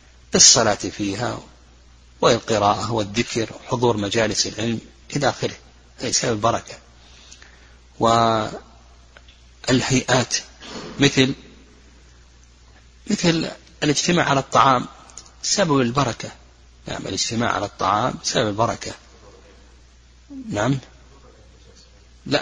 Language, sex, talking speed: Arabic, male, 75 wpm